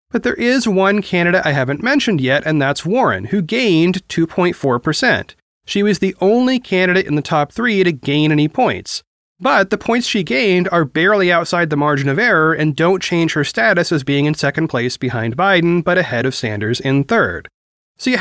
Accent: American